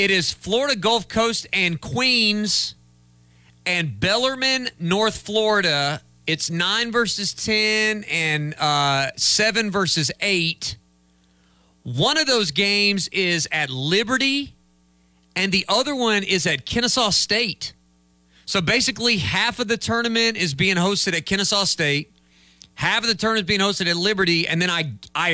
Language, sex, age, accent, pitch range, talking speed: English, male, 40-59, American, 125-195 Hz, 140 wpm